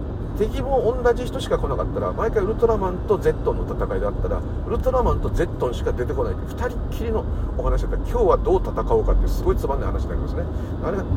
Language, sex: Japanese, male